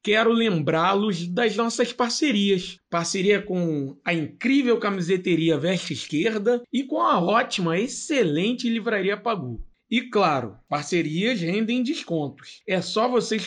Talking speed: 120 wpm